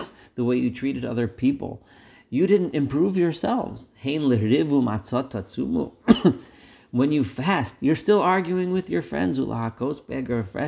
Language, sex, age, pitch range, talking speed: English, male, 40-59, 105-130 Hz, 110 wpm